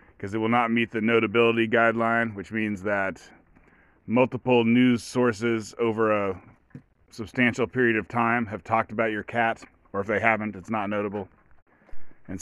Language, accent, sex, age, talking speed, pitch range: English, American, male, 30-49, 160 wpm, 110-130 Hz